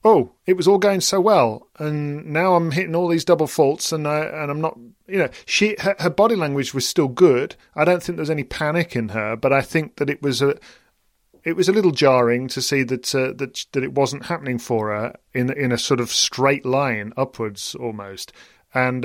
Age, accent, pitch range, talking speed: 40-59, British, 120-145 Hz, 225 wpm